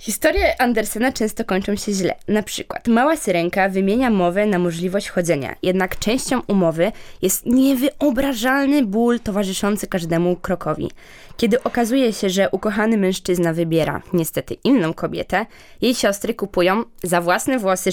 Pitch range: 175-230 Hz